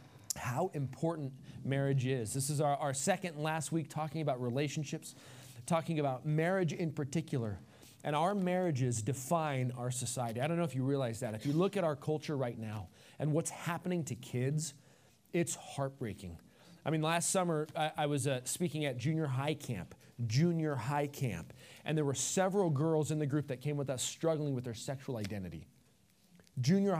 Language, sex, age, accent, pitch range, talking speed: English, male, 30-49, American, 130-160 Hz, 180 wpm